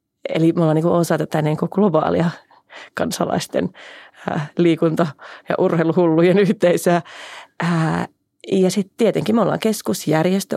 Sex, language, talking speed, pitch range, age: female, Finnish, 95 wpm, 160-185 Hz, 30-49